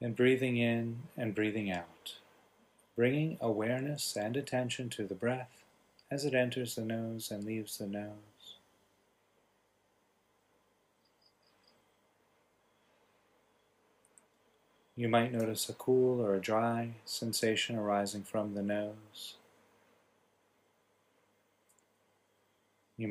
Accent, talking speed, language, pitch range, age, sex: American, 95 wpm, English, 105-120 Hz, 30-49, male